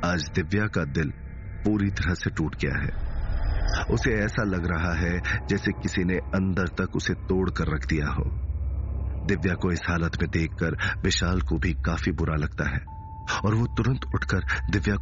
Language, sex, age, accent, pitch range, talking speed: Hindi, male, 40-59, native, 85-125 Hz, 175 wpm